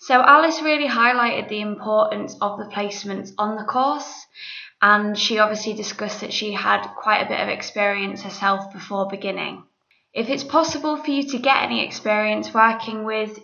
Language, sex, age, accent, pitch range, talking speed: English, female, 20-39, British, 205-235 Hz, 170 wpm